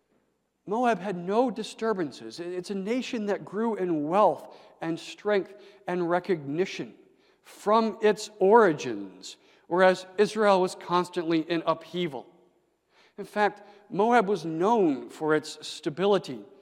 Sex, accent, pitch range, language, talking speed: male, American, 125-190 Hz, English, 115 wpm